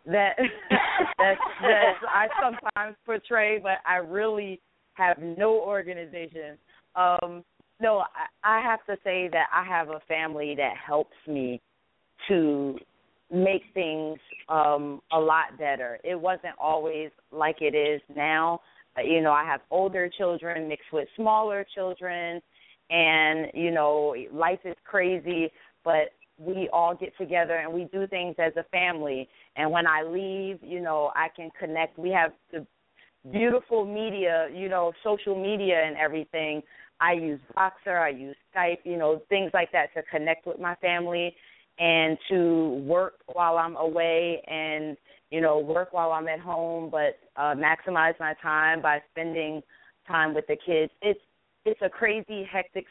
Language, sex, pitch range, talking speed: English, female, 155-185 Hz, 155 wpm